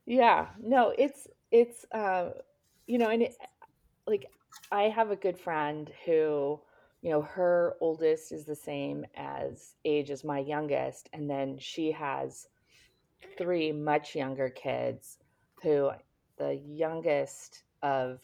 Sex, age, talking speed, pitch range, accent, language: female, 30-49, 130 wpm, 140-200 Hz, American, English